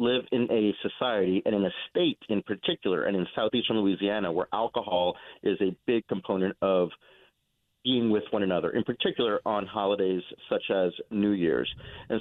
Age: 40-59